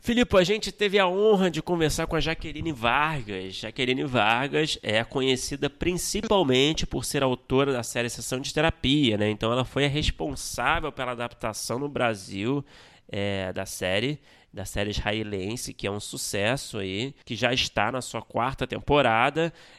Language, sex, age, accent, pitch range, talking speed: Portuguese, male, 20-39, Brazilian, 105-140 Hz, 160 wpm